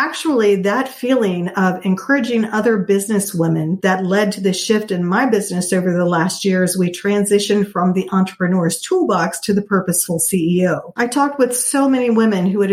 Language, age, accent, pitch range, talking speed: English, 50-69, American, 185-230 Hz, 185 wpm